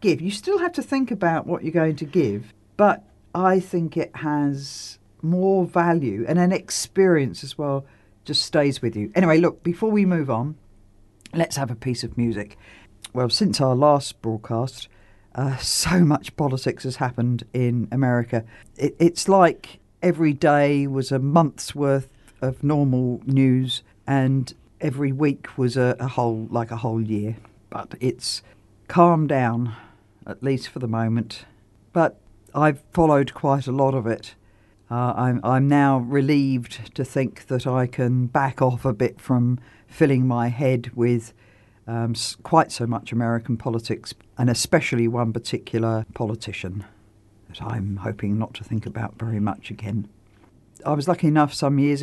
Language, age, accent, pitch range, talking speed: English, 50-69, British, 115-145 Hz, 160 wpm